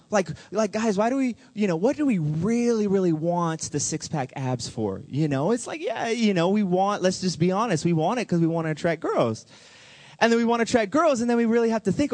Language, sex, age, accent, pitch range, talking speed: English, male, 20-39, American, 125-195 Hz, 270 wpm